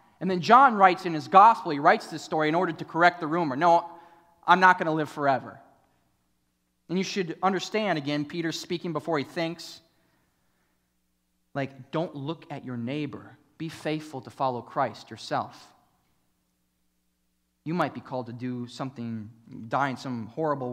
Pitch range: 115-145 Hz